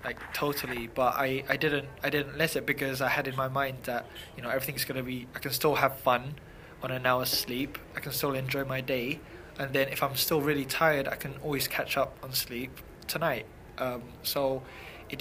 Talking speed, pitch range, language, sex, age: 220 wpm, 125-145 Hz, English, male, 20-39